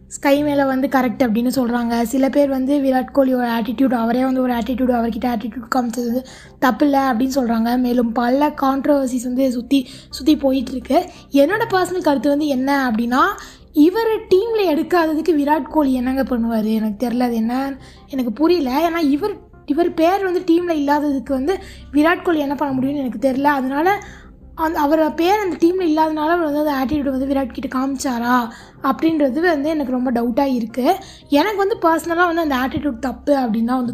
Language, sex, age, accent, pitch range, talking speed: Tamil, female, 20-39, native, 255-315 Hz, 170 wpm